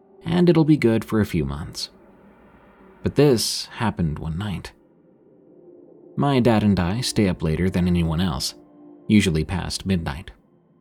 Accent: American